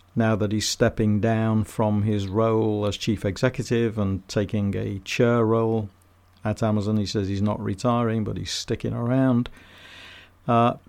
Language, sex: English, male